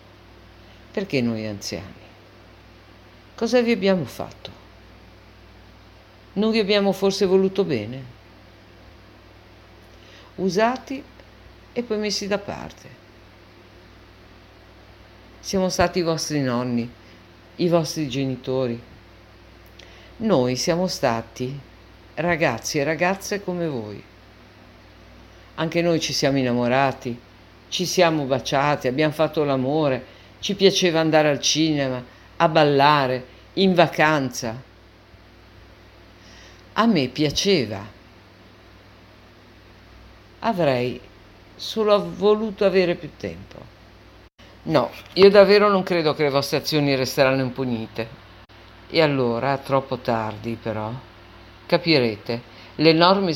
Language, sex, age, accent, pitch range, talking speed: Italian, female, 50-69, native, 105-160 Hz, 90 wpm